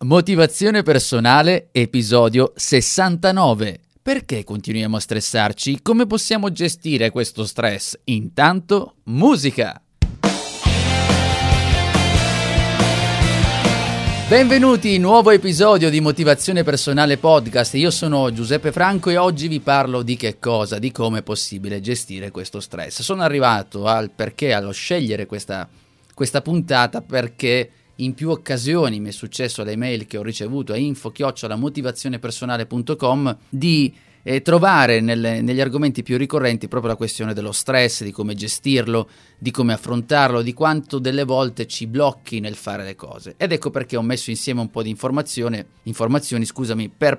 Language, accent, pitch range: Italian, native, 110-145 Hz